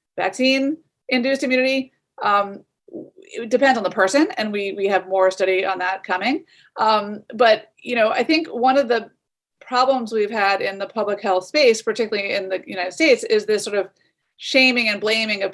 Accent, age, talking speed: American, 30-49, 180 wpm